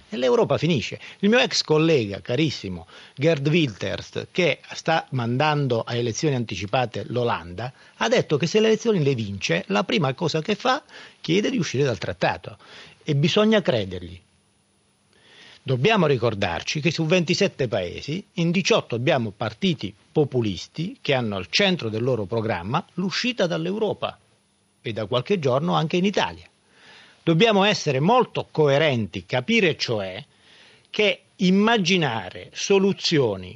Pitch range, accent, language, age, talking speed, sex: 115-185 Hz, native, Italian, 40-59, 130 wpm, male